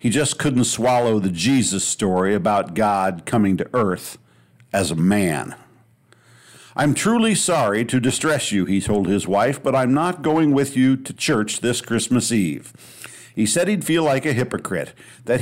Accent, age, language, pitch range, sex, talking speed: American, 50-69, English, 110-140 Hz, male, 170 wpm